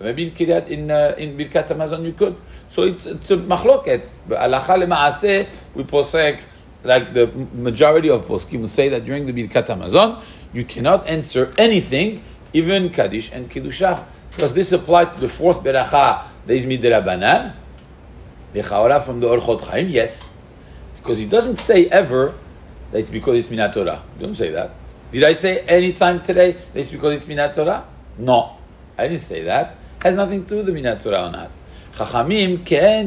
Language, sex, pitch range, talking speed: English, male, 125-180 Hz, 175 wpm